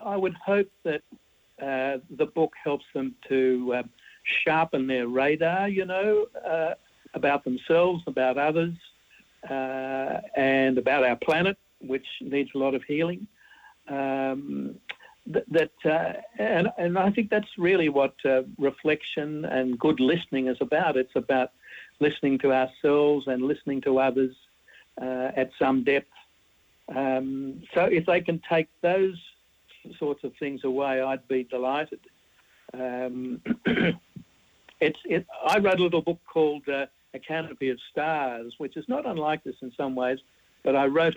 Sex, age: male, 60-79